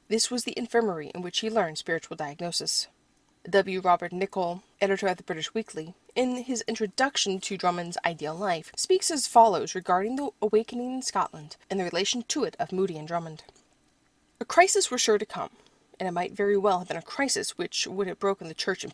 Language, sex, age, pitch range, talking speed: English, female, 30-49, 180-235 Hz, 205 wpm